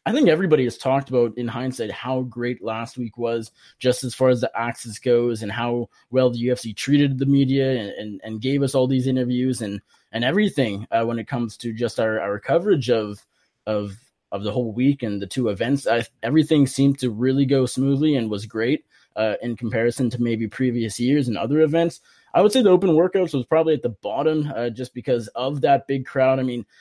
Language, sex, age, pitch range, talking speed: English, male, 20-39, 120-140 Hz, 215 wpm